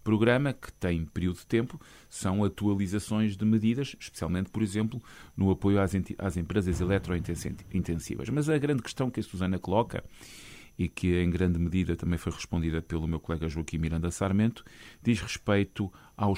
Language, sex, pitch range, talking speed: Portuguese, male, 90-110 Hz, 165 wpm